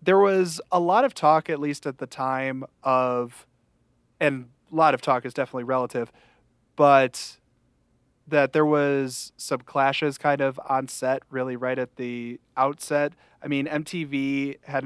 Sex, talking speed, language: male, 160 wpm, English